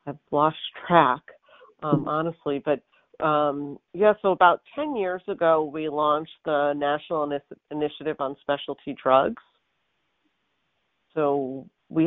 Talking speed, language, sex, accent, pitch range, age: 115 wpm, English, female, American, 140-165 Hz, 40-59